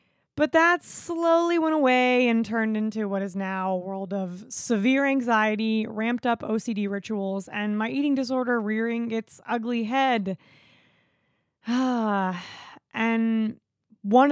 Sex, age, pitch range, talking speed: female, 20-39, 200-240 Hz, 125 wpm